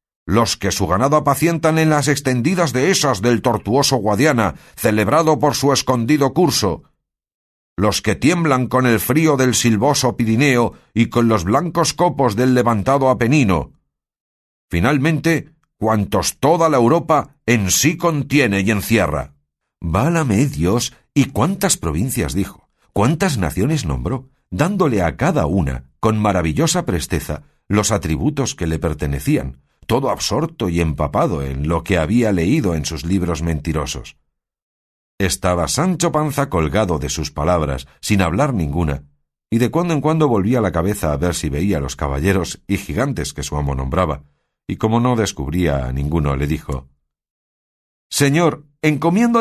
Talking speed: 145 wpm